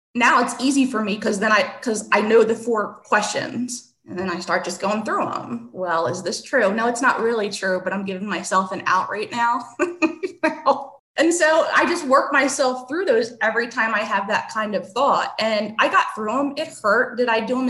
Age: 20-39